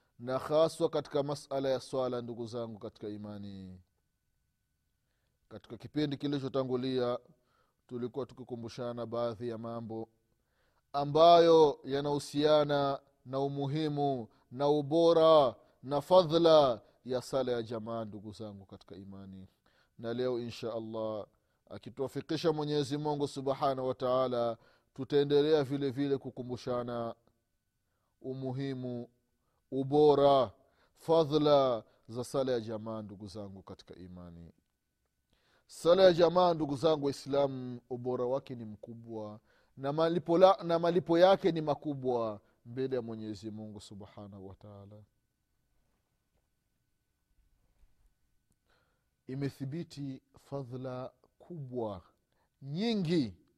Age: 30-49